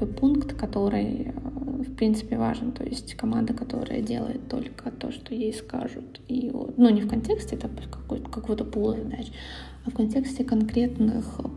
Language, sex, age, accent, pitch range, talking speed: Russian, female, 20-39, native, 220-250 Hz, 145 wpm